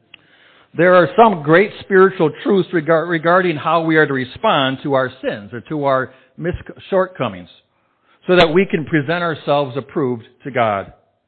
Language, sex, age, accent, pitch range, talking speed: English, male, 60-79, American, 130-175 Hz, 150 wpm